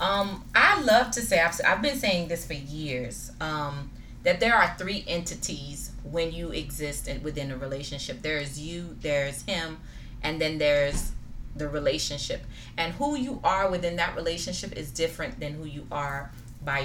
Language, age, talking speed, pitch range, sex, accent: English, 30-49, 175 wpm, 145-175 Hz, female, American